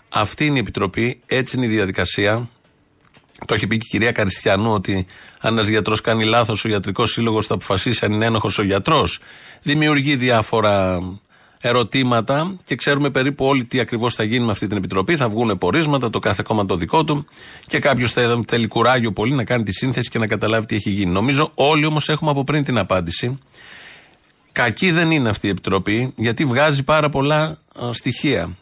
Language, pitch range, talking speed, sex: Greek, 105-140 Hz, 190 wpm, male